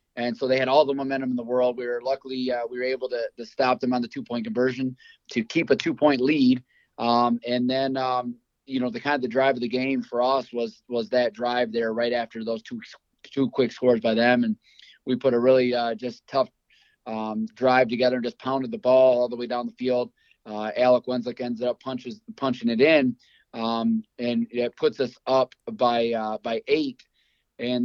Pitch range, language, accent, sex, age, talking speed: 120-135 Hz, English, American, male, 20-39, 225 wpm